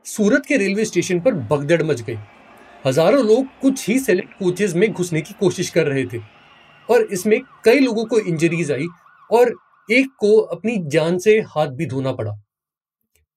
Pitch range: 150-225 Hz